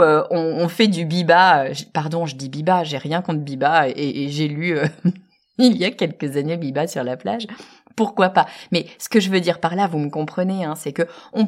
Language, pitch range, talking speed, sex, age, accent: French, 160-220 Hz, 230 wpm, female, 30-49, French